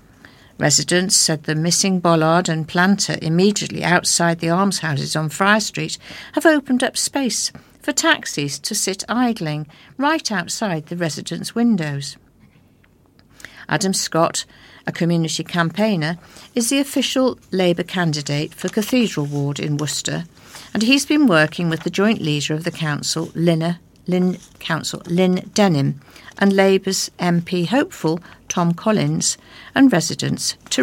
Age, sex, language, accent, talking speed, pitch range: 50-69, female, English, British, 130 wpm, 155-200 Hz